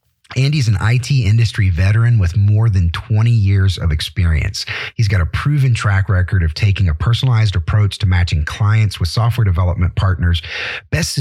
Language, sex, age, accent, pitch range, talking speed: English, male, 30-49, American, 95-120 Hz, 165 wpm